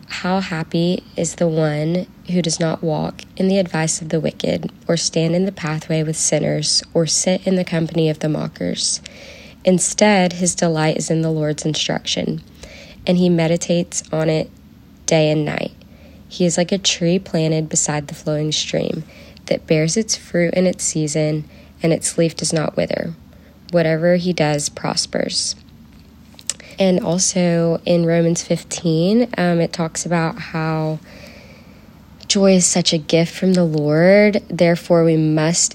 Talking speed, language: 160 wpm, English